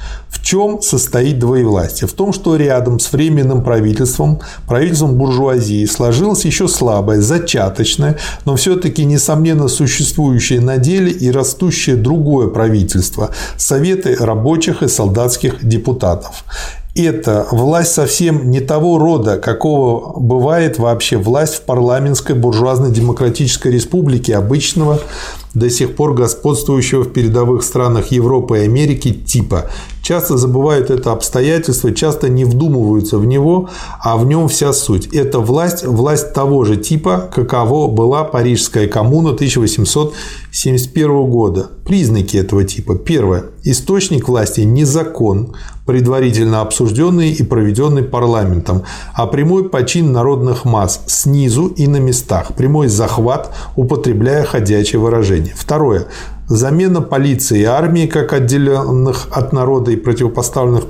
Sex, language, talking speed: male, Russian, 120 wpm